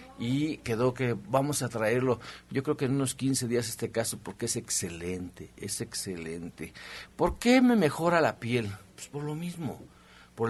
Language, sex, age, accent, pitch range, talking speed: Spanish, male, 50-69, Mexican, 110-145 Hz, 175 wpm